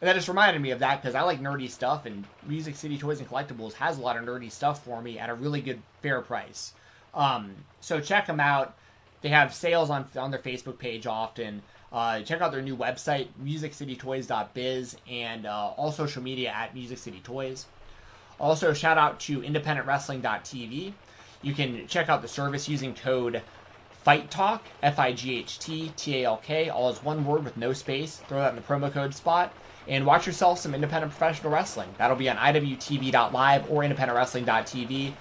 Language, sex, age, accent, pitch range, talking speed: English, male, 20-39, American, 125-160 Hz, 175 wpm